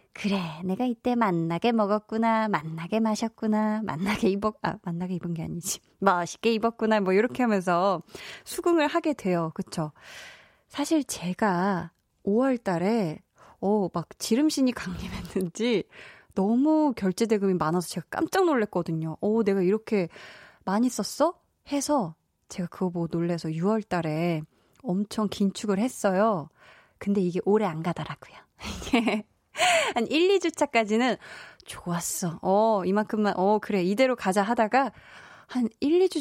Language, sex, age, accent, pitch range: Korean, female, 20-39, native, 185-245 Hz